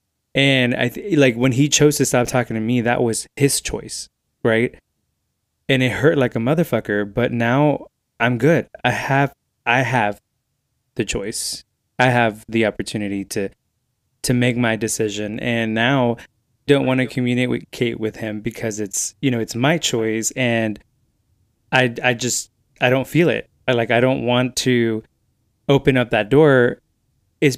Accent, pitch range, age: American, 110-130 Hz, 20-39